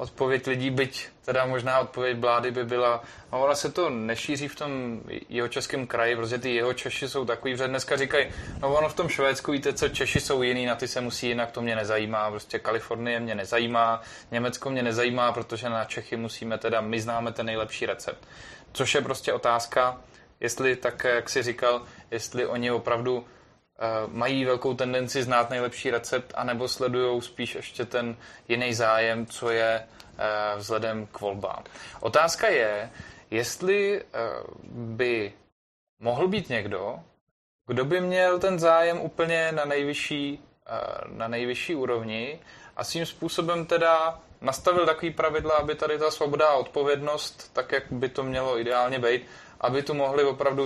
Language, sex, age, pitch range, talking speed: Czech, male, 20-39, 115-140 Hz, 160 wpm